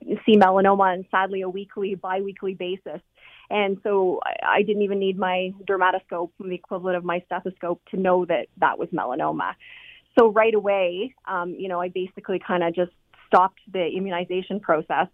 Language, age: English, 30-49